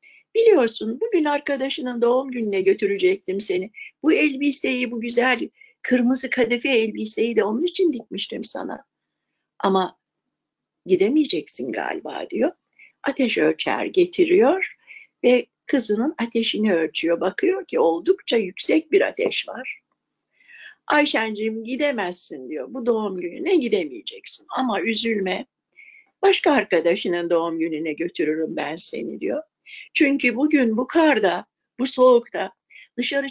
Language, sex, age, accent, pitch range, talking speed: Turkish, female, 60-79, native, 220-330 Hz, 110 wpm